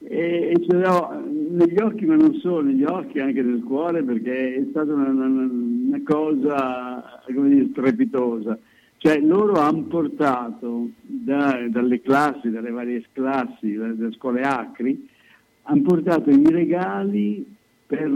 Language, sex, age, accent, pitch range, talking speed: Italian, male, 60-79, native, 125-185 Hz, 140 wpm